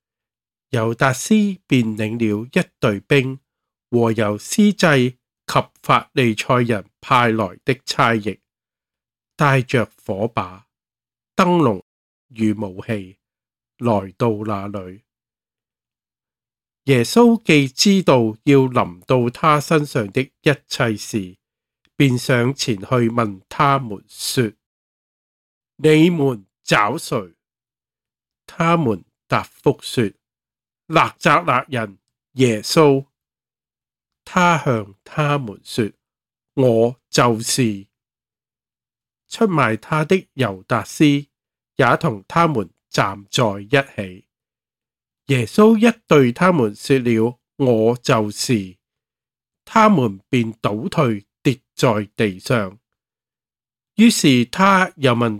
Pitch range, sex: 110-145 Hz, male